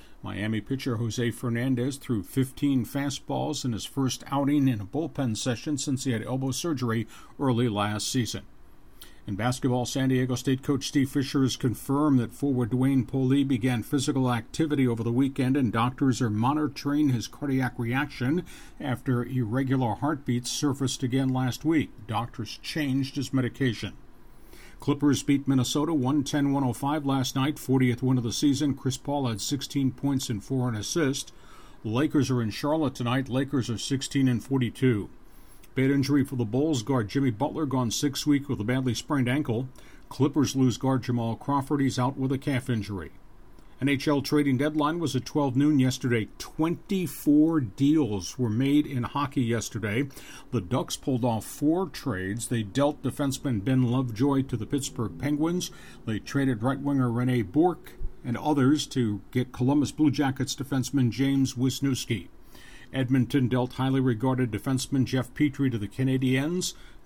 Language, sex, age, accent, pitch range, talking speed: English, male, 50-69, American, 125-140 Hz, 155 wpm